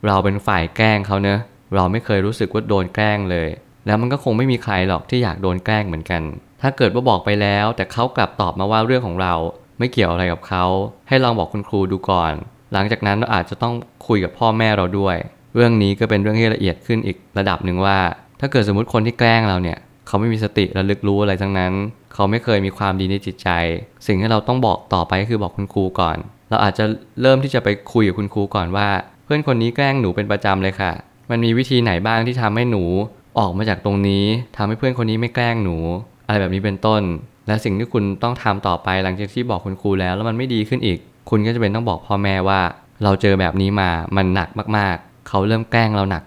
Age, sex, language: 20-39, male, Thai